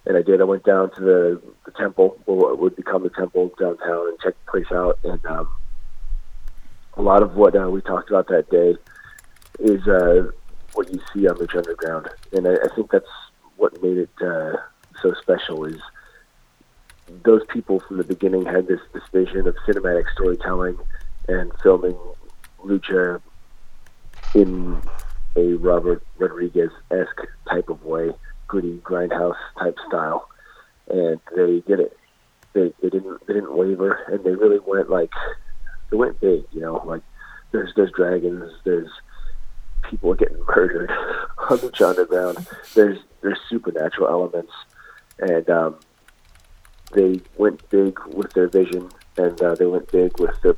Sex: male